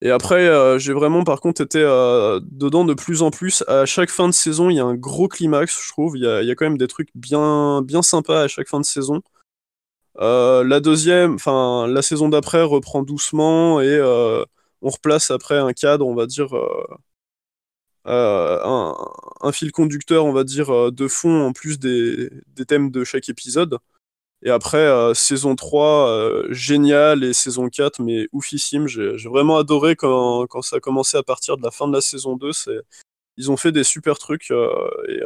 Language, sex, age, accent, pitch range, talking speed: French, male, 20-39, French, 135-165 Hz, 205 wpm